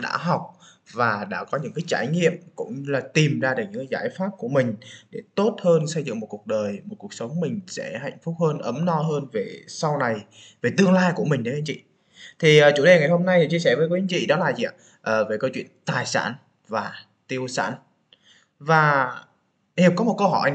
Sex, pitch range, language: male, 145-200 Hz, Vietnamese